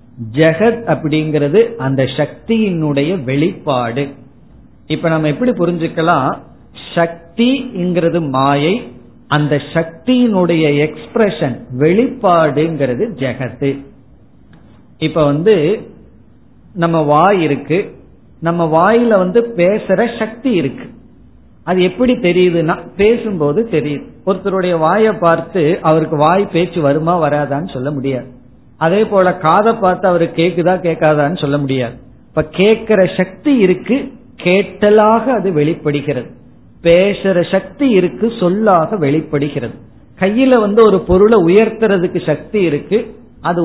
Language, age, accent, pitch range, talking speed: Tamil, 50-69, native, 150-200 Hz, 90 wpm